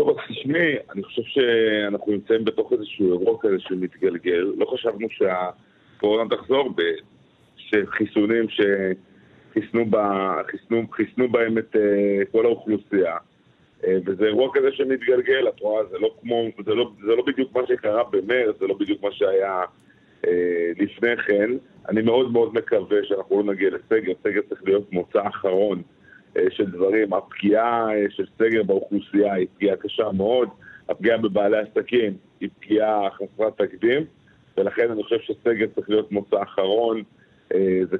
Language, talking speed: English, 125 wpm